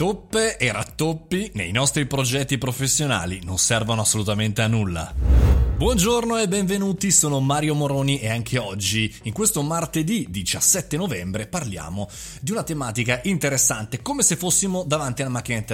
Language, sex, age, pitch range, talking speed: Italian, male, 20-39, 110-165 Hz, 140 wpm